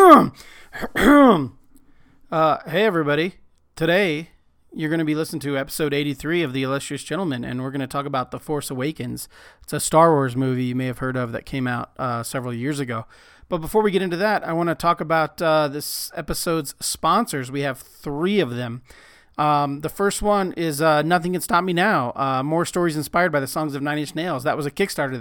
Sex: male